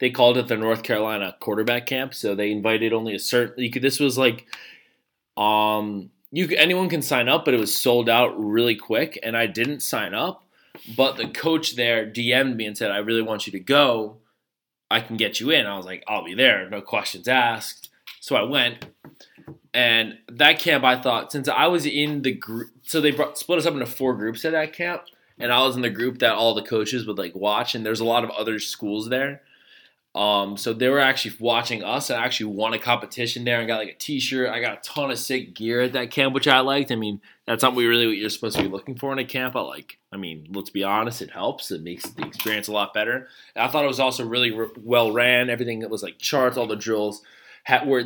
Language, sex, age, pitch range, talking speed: English, male, 20-39, 110-130 Hz, 240 wpm